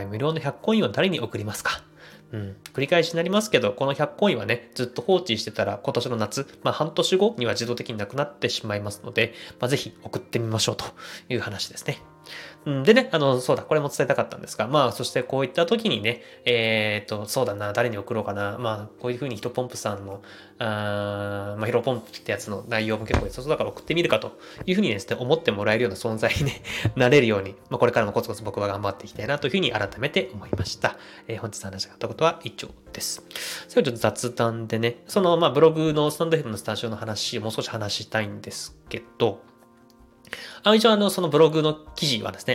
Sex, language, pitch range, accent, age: male, Japanese, 110-150 Hz, native, 20-39